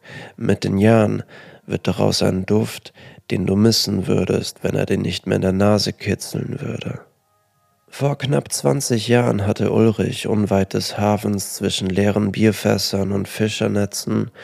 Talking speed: 145 wpm